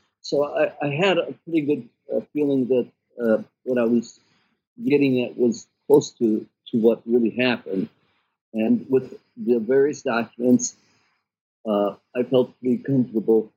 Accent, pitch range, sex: American, 115-135 Hz, male